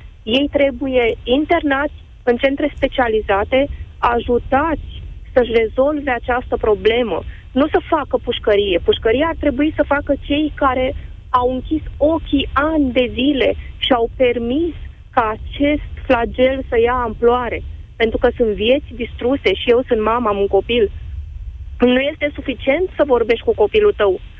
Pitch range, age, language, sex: 215-295 Hz, 30-49, Romanian, female